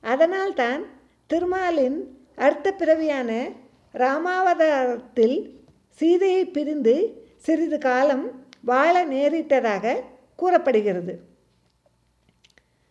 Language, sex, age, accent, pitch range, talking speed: Tamil, female, 50-69, native, 255-340 Hz, 55 wpm